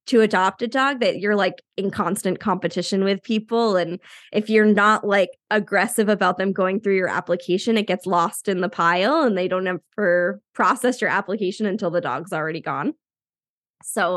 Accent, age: American, 10-29